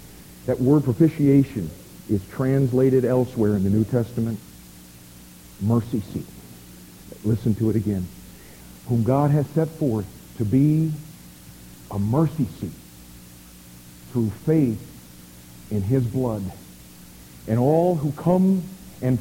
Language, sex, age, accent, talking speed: English, male, 50-69, American, 110 wpm